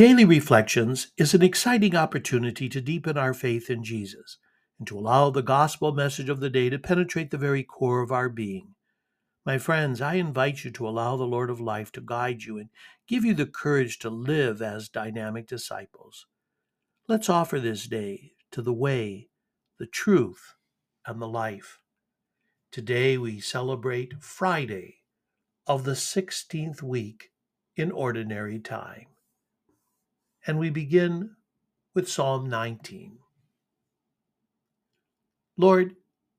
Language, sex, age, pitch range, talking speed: English, male, 60-79, 120-160 Hz, 135 wpm